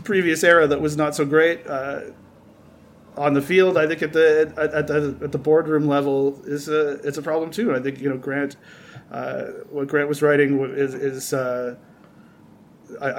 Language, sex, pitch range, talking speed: English, male, 140-160 Hz, 185 wpm